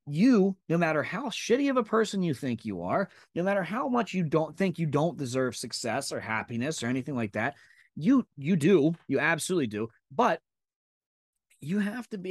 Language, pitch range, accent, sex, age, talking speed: English, 105-150 Hz, American, male, 20-39, 195 wpm